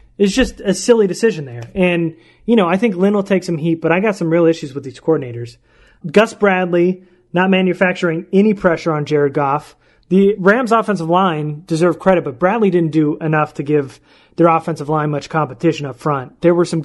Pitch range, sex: 160-195 Hz, male